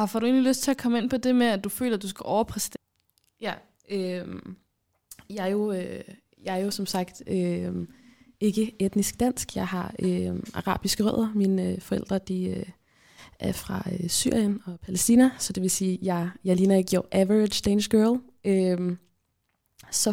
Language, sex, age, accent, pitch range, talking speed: Danish, female, 20-39, native, 185-215 Hz, 190 wpm